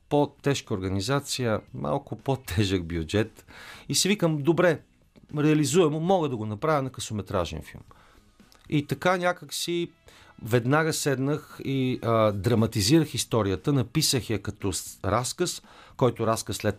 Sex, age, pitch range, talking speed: male, 40-59, 100-135 Hz, 120 wpm